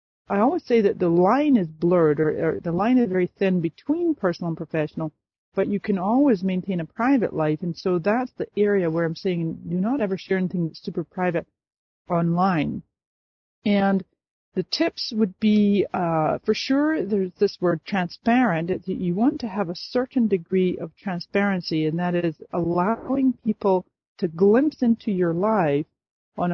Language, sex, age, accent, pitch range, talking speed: English, female, 40-59, American, 175-220 Hz, 170 wpm